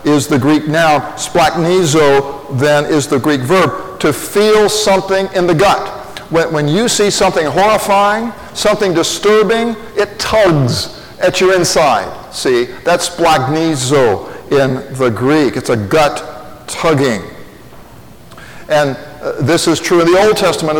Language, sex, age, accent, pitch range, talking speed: English, male, 50-69, American, 145-190 Hz, 135 wpm